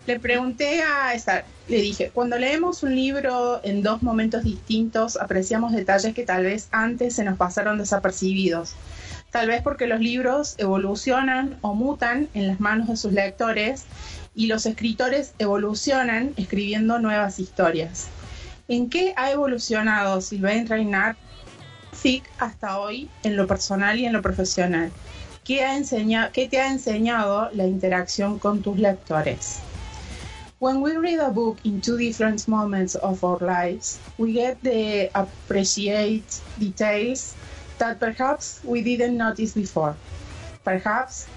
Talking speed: 140 wpm